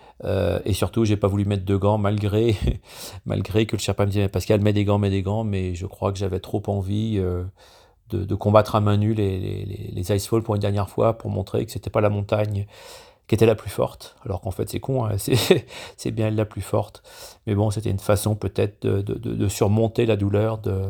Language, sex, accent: French, male, French